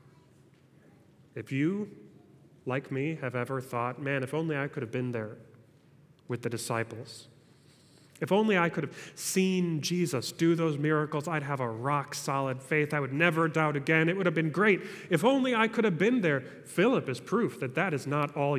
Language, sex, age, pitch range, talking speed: English, male, 30-49, 130-160 Hz, 185 wpm